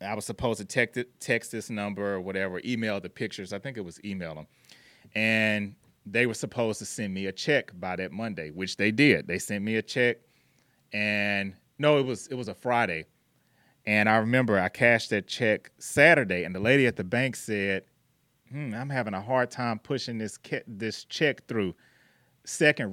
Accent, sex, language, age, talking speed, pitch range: American, male, English, 30-49, 190 wpm, 100-125 Hz